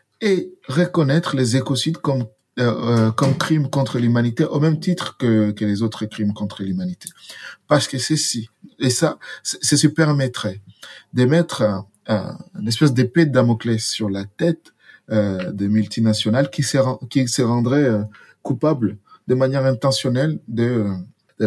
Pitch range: 115-155 Hz